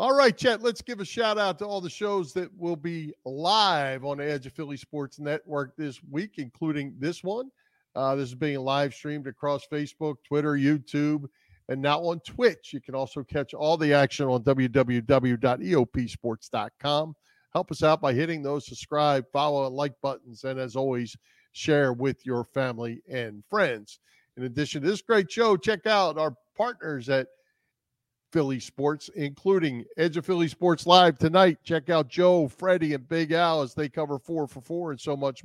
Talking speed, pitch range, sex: 180 wpm, 135-175 Hz, male